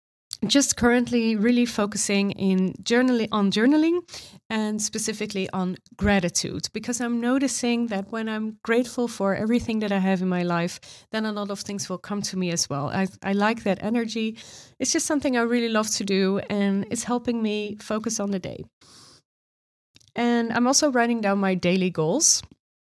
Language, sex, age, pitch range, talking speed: English, female, 30-49, 190-230 Hz, 175 wpm